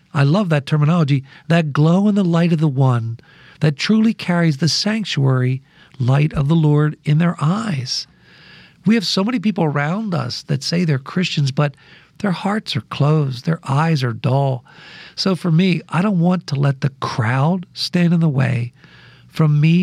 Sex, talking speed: male, 180 wpm